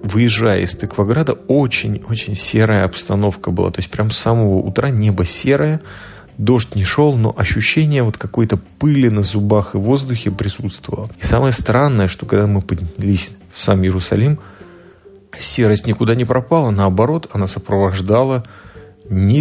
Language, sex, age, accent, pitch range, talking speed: Russian, male, 30-49, native, 95-115 Hz, 140 wpm